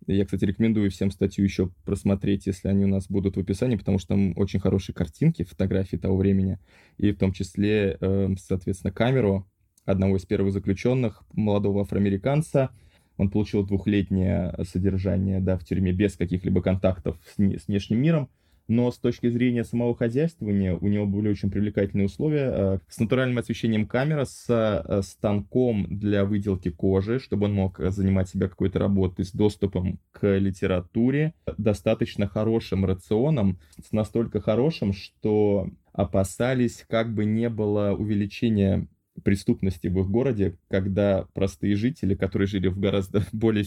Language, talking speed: Russian, 145 wpm